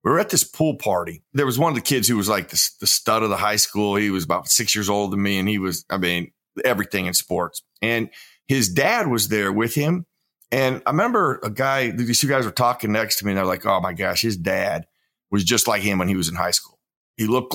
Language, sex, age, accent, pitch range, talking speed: English, male, 40-59, American, 95-120 Hz, 265 wpm